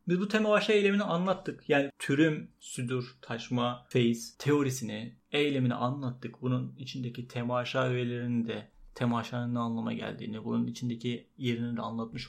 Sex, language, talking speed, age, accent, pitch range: male, Turkish, 125 wpm, 30-49, native, 120-170 Hz